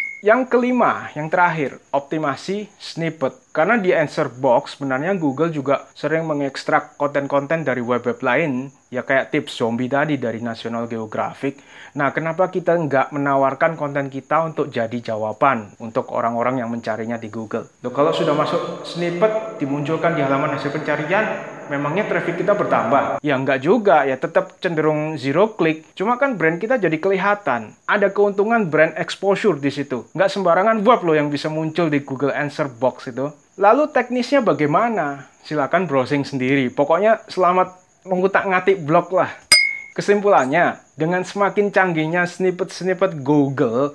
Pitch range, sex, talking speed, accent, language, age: 135-190 Hz, male, 145 wpm, native, Indonesian, 30-49